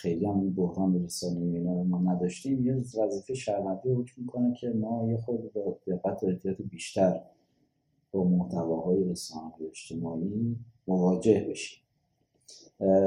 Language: Persian